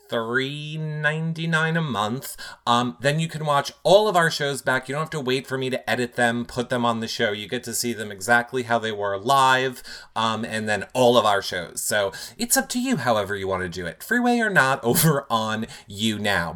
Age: 30-49